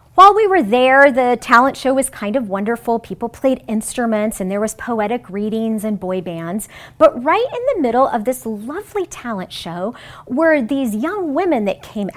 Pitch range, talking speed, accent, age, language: 210-285 Hz, 185 wpm, American, 40-59, English